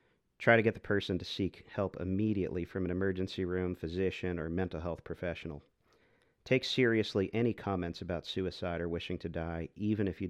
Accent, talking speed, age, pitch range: American, 180 wpm, 40-59, 90-100 Hz